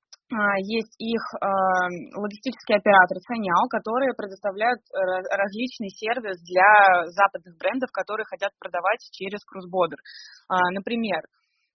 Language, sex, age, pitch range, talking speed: Russian, female, 20-39, 185-230 Hz, 90 wpm